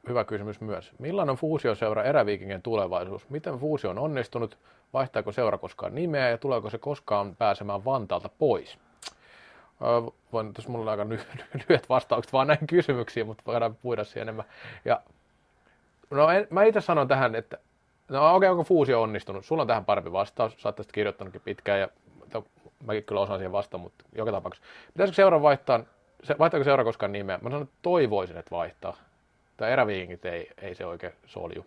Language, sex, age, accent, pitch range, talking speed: Finnish, male, 30-49, native, 100-130 Hz, 170 wpm